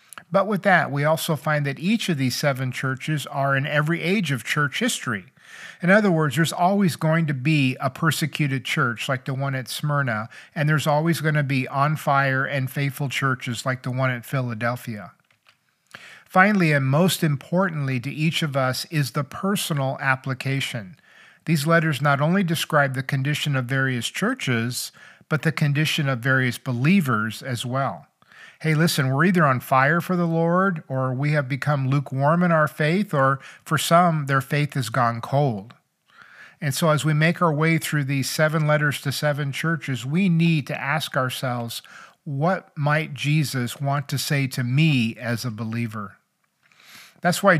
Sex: male